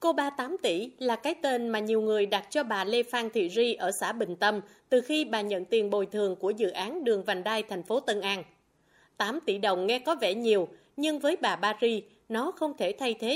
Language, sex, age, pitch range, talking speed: Vietnamese, female, 20-39, 200-280 Hz, 245 wpm